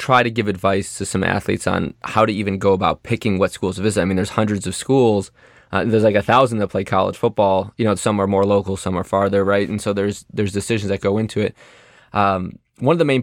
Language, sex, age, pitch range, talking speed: English, male, 20-39, 100-120 Hz, 260 wpm